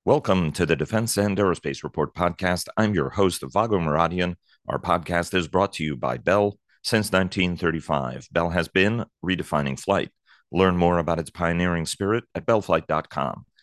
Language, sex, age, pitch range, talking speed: English, male, 40-59, 80-100 Hz, 160 wpm